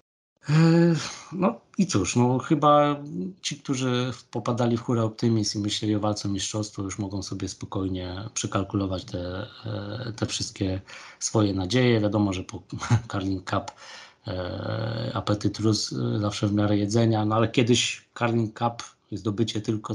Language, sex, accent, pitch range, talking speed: Polish, male, native, 95-115 Hz, 130 wpm